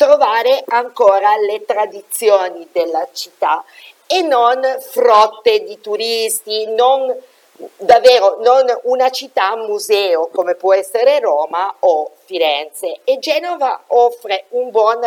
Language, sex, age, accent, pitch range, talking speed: Italian, female, 50-69, native, 195-325 Hz, 110 wpm